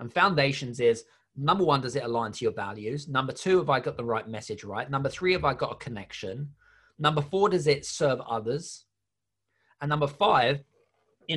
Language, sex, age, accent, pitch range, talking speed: English, male, 30-49, British, 115-150 Hz, 195 wpm